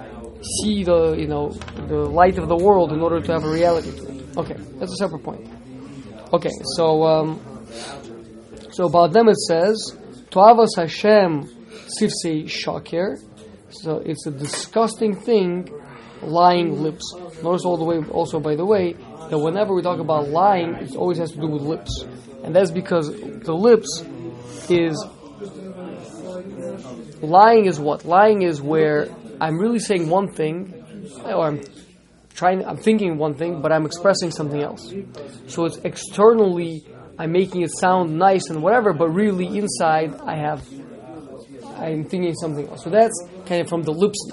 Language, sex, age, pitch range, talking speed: English, male, 20-39, 150-180 Hz, 160 wpm